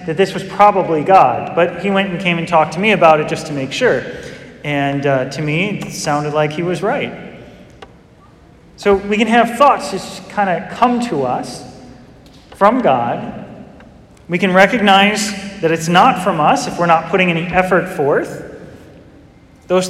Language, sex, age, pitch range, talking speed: English, male, 30-49, 175-210 Hz, 180 wpm